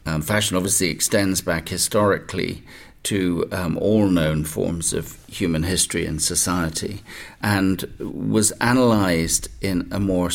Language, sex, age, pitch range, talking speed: English, male, 50-69, 85-105 Hz, 130 wpm